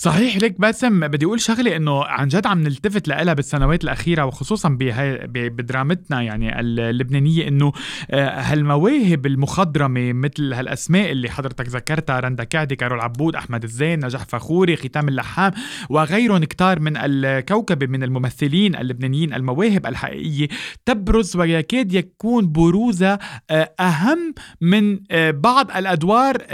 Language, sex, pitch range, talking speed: Arabic, male, 140-195 Hz, 120 wpm